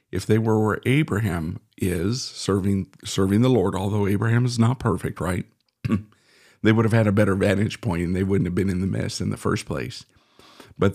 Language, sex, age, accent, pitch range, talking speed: English, male, 50-69, American, 105-125 Hz, 205 wpm